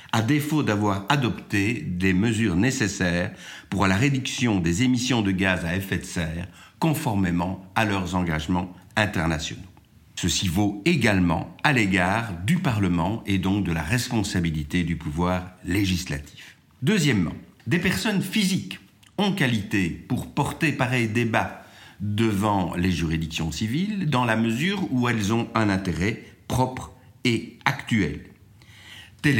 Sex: male